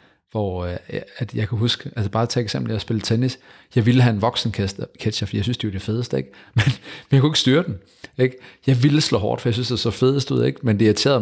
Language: Danish